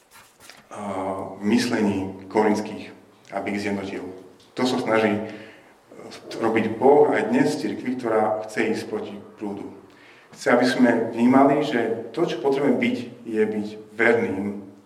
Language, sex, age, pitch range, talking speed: Slovak, male, 40-59, 105-130 Hz, 120 wpm